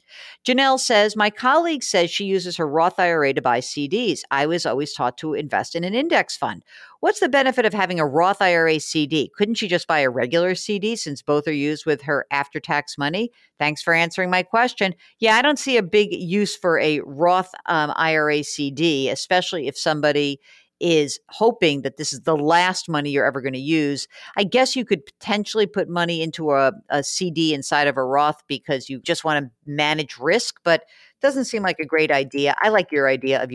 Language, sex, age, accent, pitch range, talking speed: English, female, 50-69, American, 145-200 Hz, 205 wpm